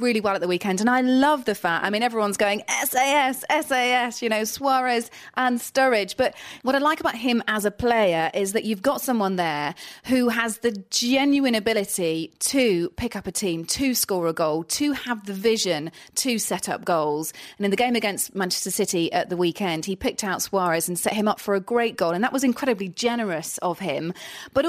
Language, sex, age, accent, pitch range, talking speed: English, female, 30-49, British, 180-245 Hz, 215 wpm